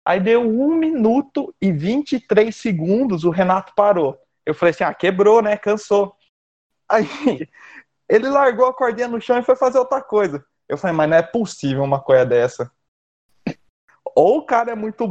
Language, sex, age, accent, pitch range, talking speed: Portuguese, male, 20-39, Brazilian, 155-250 Hz, 170 wpm